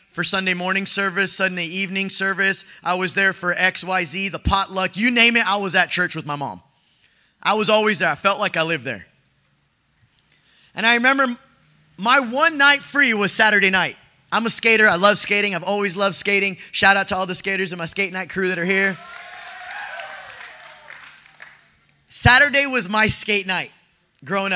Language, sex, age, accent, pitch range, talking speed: English, male, 20-39, American, 175-220 Hz, 180 wpm